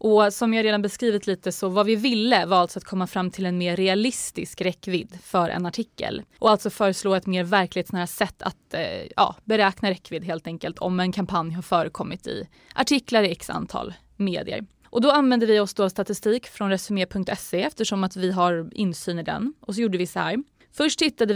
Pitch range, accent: 180-225 Hz, native